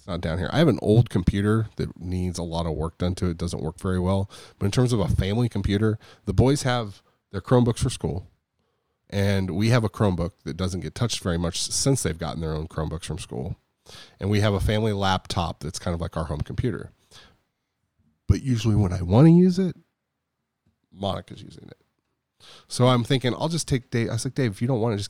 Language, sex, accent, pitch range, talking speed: English, male, American, 95-125 Hz, 230 wpm